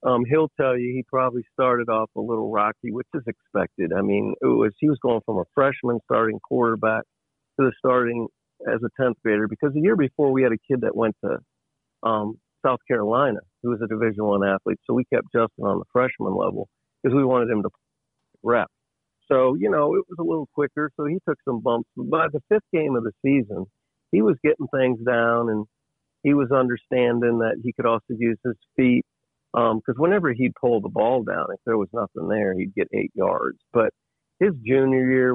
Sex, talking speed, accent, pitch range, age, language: male, 210 wpm, American, 110-135 Hz, 50-69, English